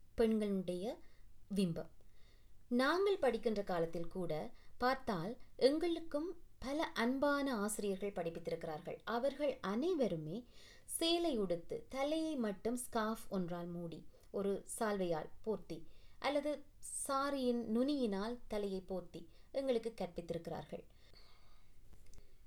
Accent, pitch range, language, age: native, 180-250 Hz, Tamil, 20-39